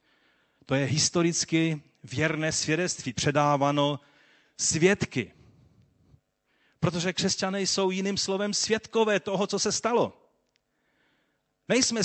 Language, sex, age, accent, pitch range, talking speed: Czech, male, 40-59, native, 130-200 Hz, 90 wpm